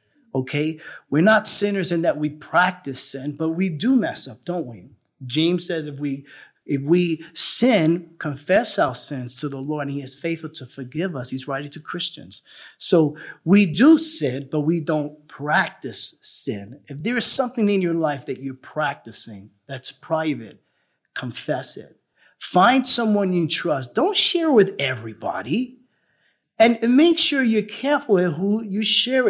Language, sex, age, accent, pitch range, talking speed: English, male, 50-69, American, 140-195 Hz, 160 wpm